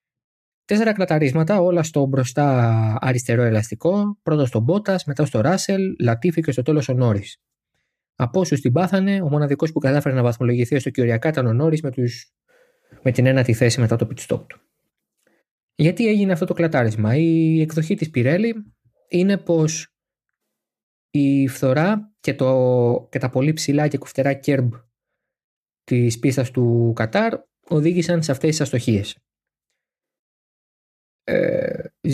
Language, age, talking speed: Greek, 20-39, 140 wpm